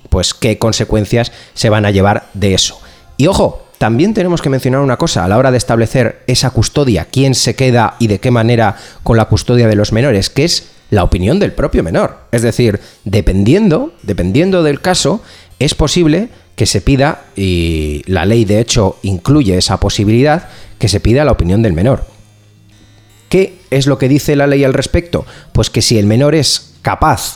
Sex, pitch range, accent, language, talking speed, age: male, 105-130 Hz, Spanish, Spanish, 190 wpm, 30-49